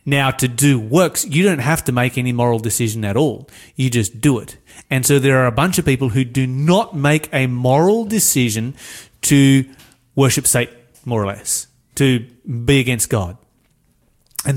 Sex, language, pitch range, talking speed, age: male, English, 120-155 Hz, 180 wpm, 30-49